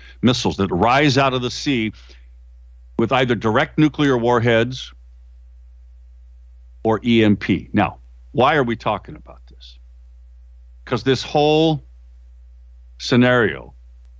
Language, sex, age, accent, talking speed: English, male, 50-69, American, 105 wpm